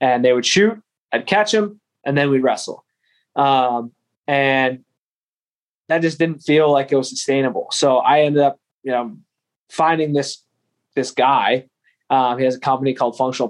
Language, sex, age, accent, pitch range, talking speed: English, male, 20-39, American, 125-145 Hz, 170 wpm